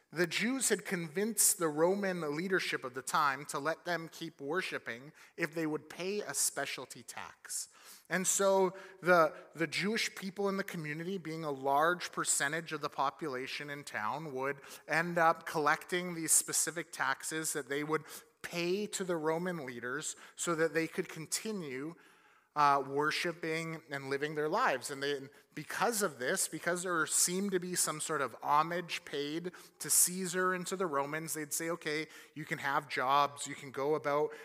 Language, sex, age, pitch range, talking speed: English, male, 30-49, 150-190 Hz, 170 wpm